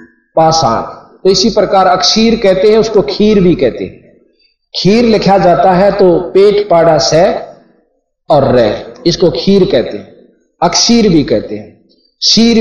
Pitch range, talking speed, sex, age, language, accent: 165-210 Hz, 150 wpm, male, 50-69, Hindi, native